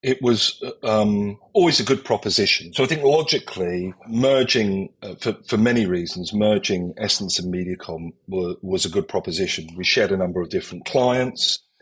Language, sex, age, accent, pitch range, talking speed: English, male, 40-59, British, 95-120 Hz, 170 wpm